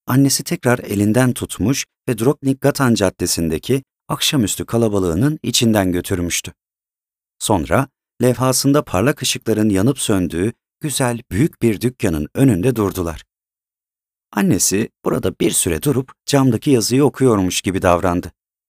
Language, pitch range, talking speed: Turkish, 95-130 Hz, 105 wpm